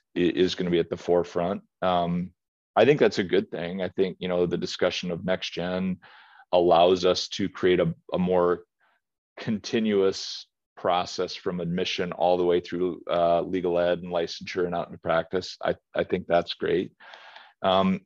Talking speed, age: 175 wpm, 40-59